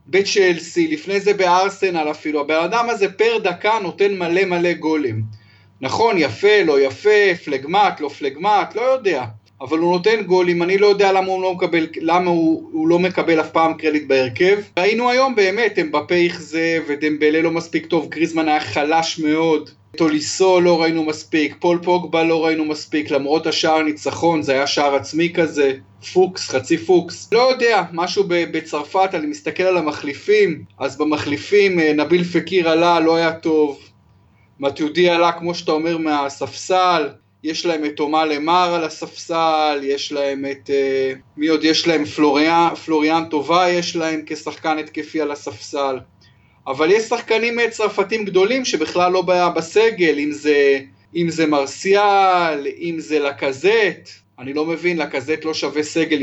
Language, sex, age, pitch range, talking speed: Hebrew, male, 30-49, 150-180 Hz, 155 wpm